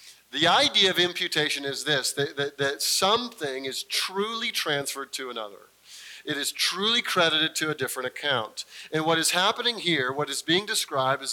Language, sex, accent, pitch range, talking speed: English, male, American, 150-220 Hz, 175 wpm